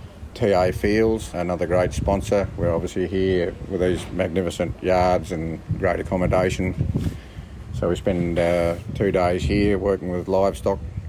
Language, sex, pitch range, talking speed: English, male, 90-105 Hz, 135 wpm